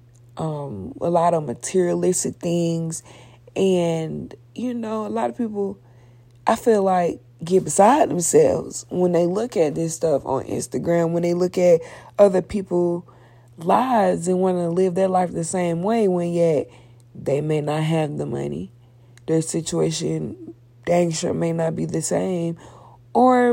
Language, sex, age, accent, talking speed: English, female, 20-39, American, 155 wpm